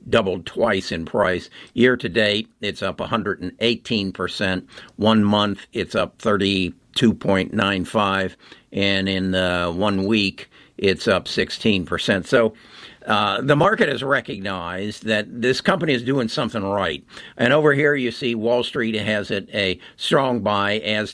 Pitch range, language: 100-130 Hz, English